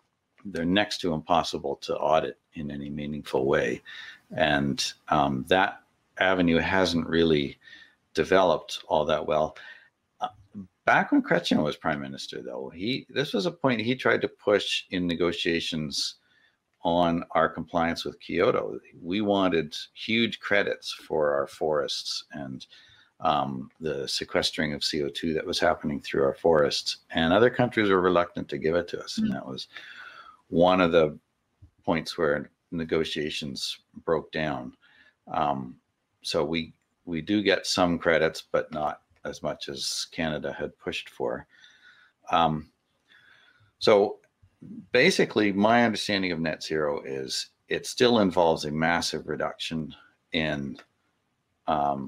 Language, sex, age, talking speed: English, male, 50-69, 135 wpm